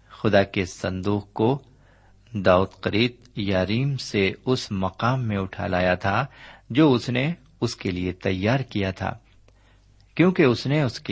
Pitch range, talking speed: 100-130 Hz, 140 wpm